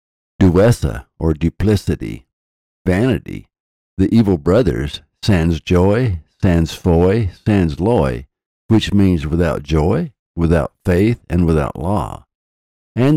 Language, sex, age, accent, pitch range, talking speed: English, male, 60-79, American, 75-105 Hz, 105 wpm